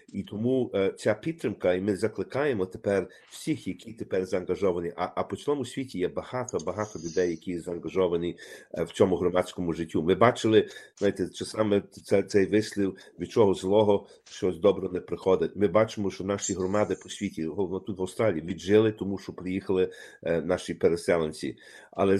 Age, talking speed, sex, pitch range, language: 50-69, 155 wpm, male, 90-110 Hz, Ukrainian